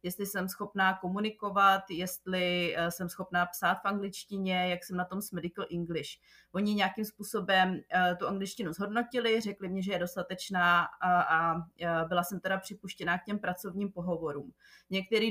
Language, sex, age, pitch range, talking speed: Slovak, female, 20-39, 175-205 Hz, 150 wpm